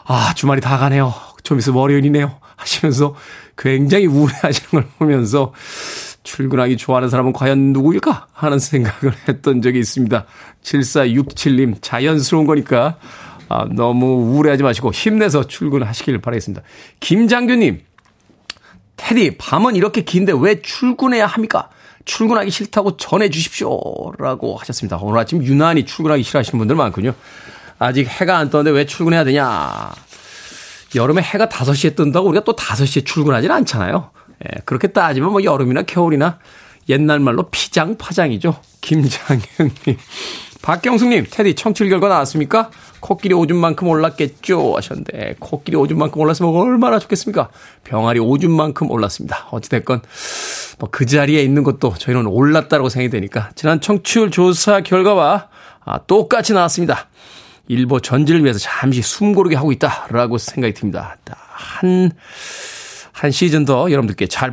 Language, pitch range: Korean, 130-180 Hz